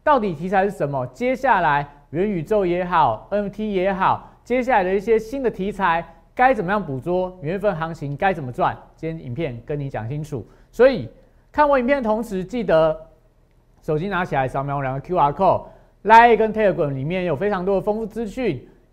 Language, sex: Chinese, male